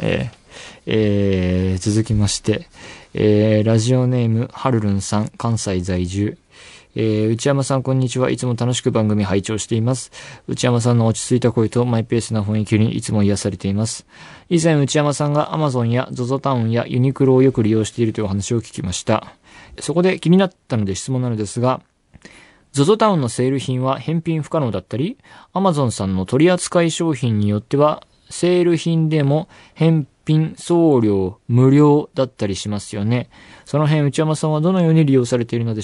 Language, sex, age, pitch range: Japanese, male, 20-39, 110-145 Hz